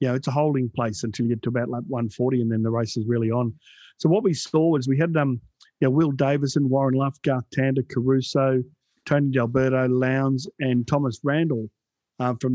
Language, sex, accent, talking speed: English, male, Australian, 190 wpm